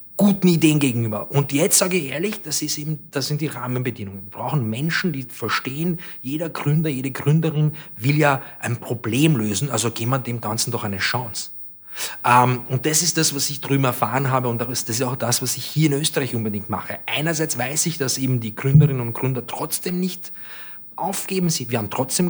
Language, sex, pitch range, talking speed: German, male, 120-155 Hz, 200 wpm